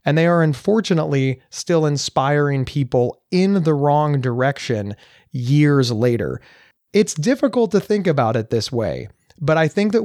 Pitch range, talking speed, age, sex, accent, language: 130-175 Hz, 150 wpm, 30-49, male, American, English